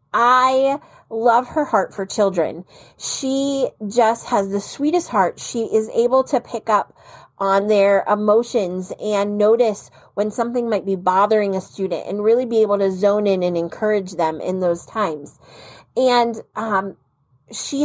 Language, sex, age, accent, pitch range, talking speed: English, female, 30-49, American, 200-255 Hz, 155 wpm